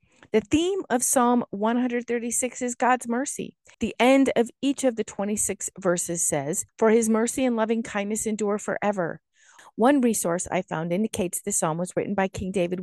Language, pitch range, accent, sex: English, 185-235 Hz, American, female